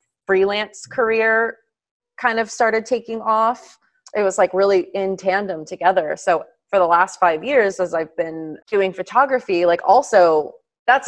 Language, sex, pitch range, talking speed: English, female, 175-230 Hz, 150 wpm